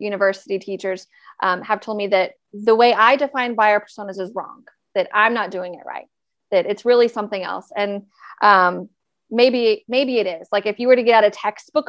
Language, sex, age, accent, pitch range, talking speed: English, female, 30-49, American, 195-230 Hz, 205 wpm